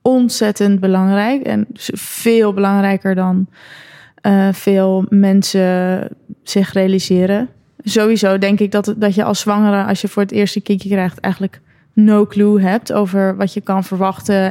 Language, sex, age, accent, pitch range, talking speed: Dutch, female, 20-39, Dutch, 190-215 Hz, 145 wpm